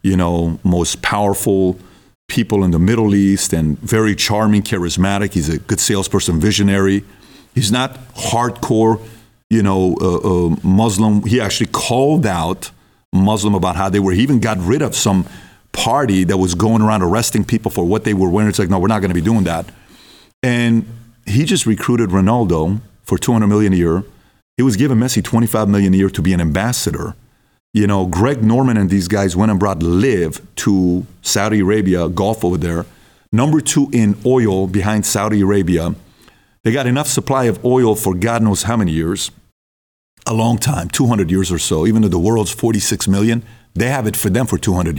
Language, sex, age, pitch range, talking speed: English, male, 40-59, 95-115 Hz, 190 wpm